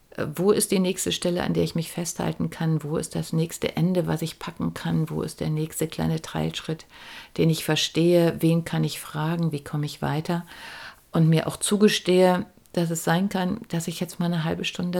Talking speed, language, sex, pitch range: 210 wpm, German, female, 155-180 Hz